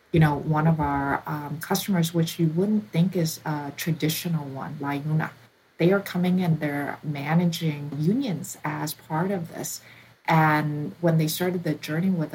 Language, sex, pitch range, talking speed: English, female, 150-175 Hz, 165 wpm